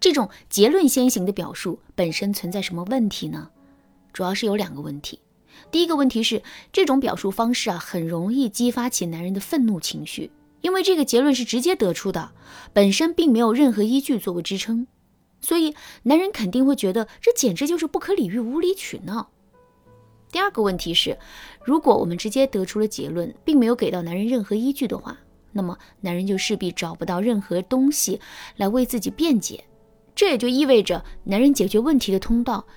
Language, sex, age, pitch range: Chinese, female, 20-39, 175-245 Hz